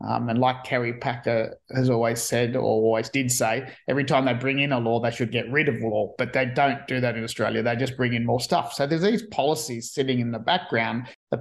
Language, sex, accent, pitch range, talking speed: English, male, Australian, 120-145 Hz, 245 wpm